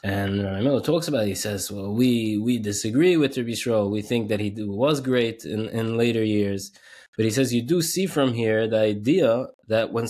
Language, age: English, 20-39